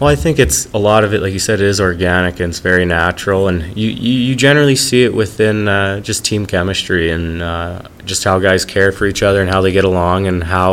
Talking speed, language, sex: 245 wpm, English, male